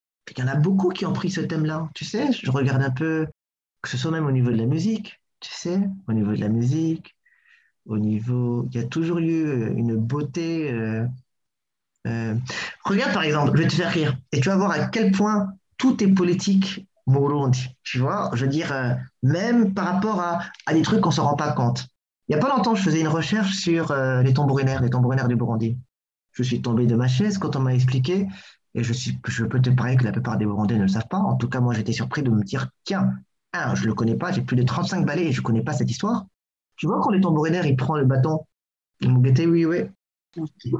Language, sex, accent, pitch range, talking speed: English, male, French, 125-175 Hz, 240 wpm